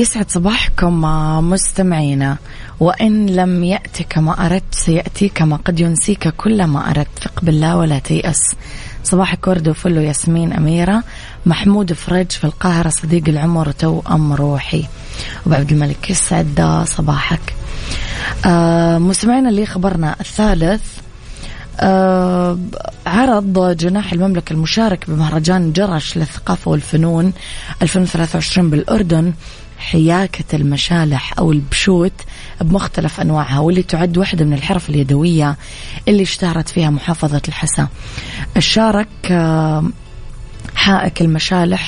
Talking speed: 100 wpm